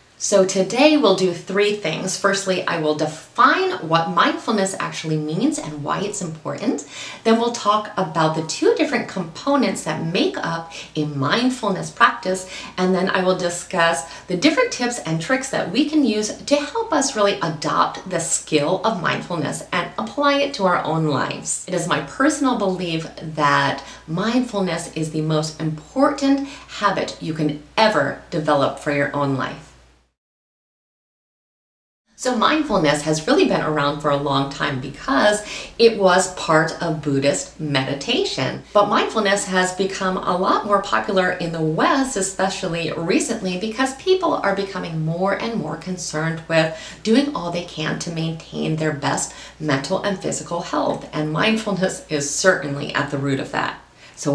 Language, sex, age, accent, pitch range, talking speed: English, female, 30-49, American, 155-205 Hz, 160 wpm